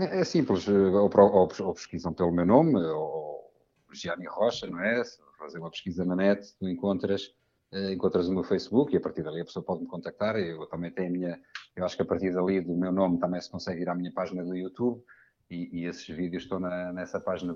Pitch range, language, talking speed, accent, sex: 90-110 Hz, Portuguese, 215 wpm, Portuguese, male